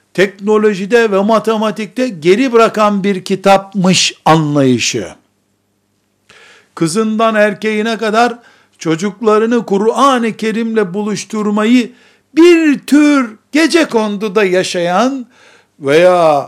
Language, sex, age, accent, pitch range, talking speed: Turkish, male, 60-79, native, 180-225 Hz, 75 wpm